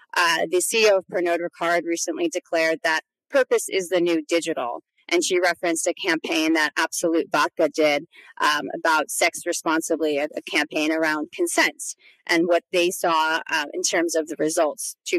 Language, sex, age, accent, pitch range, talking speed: English, female, 30-49, American, 160-210 Hz, 165 wpm